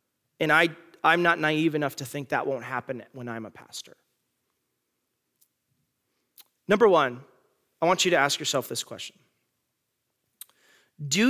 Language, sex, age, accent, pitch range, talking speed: English, male, 30-49, American, 130-165 Hz, 135 wpm